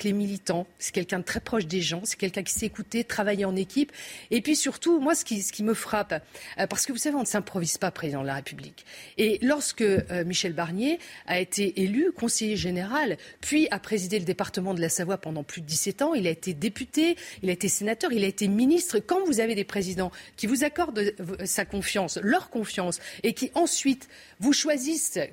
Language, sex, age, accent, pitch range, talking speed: French, female, 40-59, French, 190-255 Hz, 220 wpm